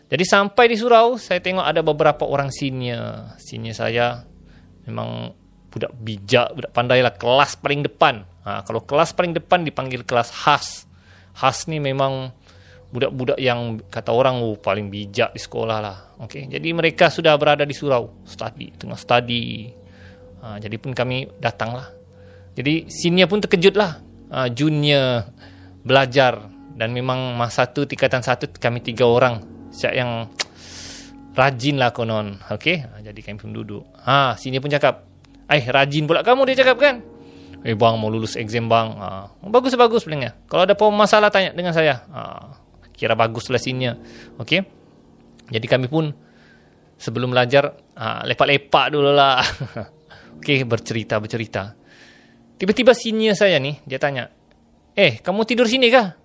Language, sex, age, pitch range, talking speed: Malay, male, 20-39, 110-155 Hz, 150 wpm